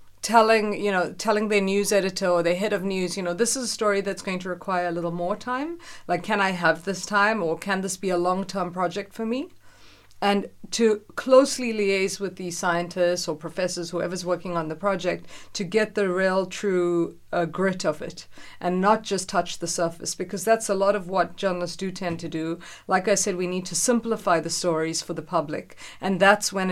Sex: female